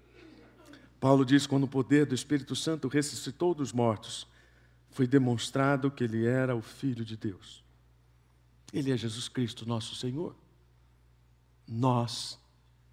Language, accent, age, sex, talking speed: Portuguese, Brazilian, 60-79, male, 125 wpm